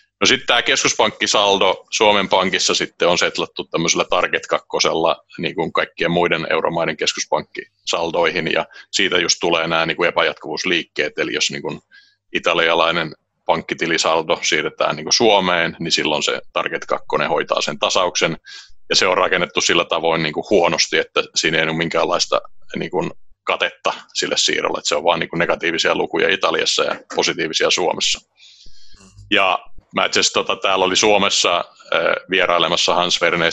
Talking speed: 145 wpm